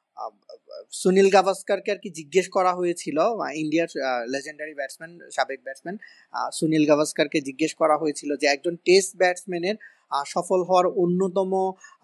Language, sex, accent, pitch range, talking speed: English, male, Indian, 155-185 Hz, 140 wpm